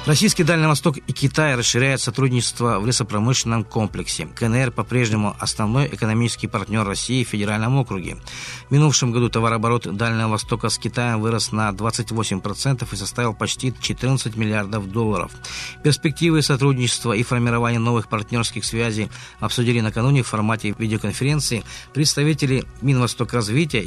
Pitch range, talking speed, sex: 110-130 Hz, 125 wpm, male